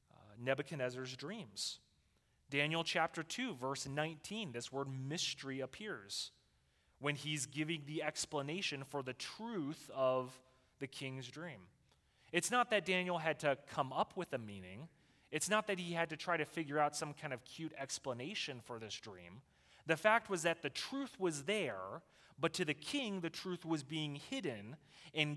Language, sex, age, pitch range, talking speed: English, male, 30-49, 130-170 Hz, 165 wpm